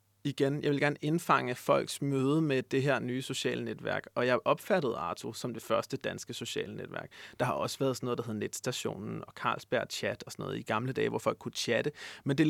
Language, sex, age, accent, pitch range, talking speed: Danish, male, 30-49, native, 120-150 Hz, 230 wpm